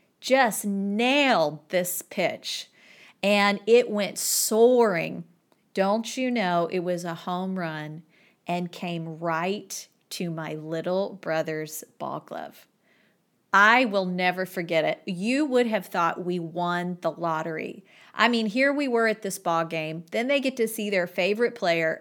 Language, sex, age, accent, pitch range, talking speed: English, female, 40-59, American, 175-215 Hz, 150 wpm